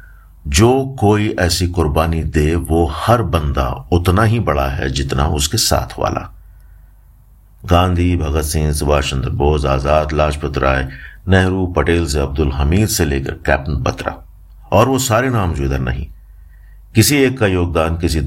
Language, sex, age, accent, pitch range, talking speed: Hindi, male, 50-69, native, 75-95 Hz, 150 wpm